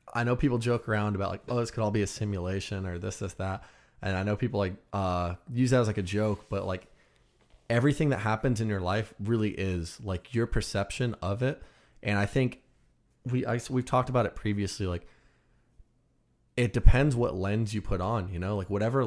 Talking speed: 210 wpm